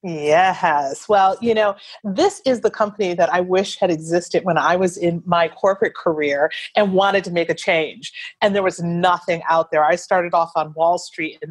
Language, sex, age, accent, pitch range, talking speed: English, female, 40-59, American, 170-235 Hz, 205 wpm